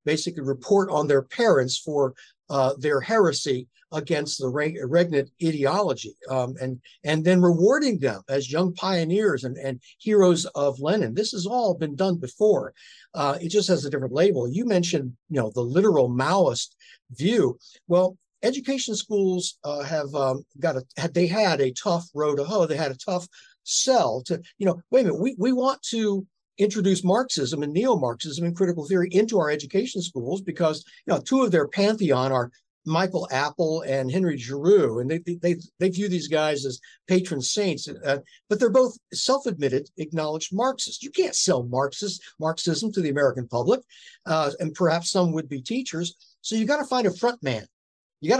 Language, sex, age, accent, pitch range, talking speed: English, male, 60-79, American, 140-195 Hz, 180 wpm